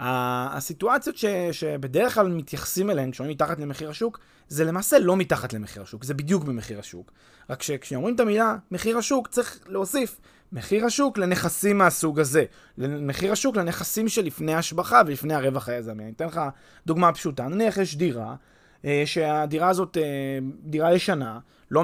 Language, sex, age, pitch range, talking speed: Hebrew, male, 20-39, 140-210 Hz, 150 wpm